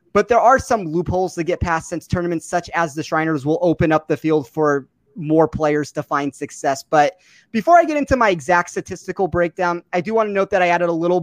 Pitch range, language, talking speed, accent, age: 155-185 Hz, English, 235 wpm, American, 30-49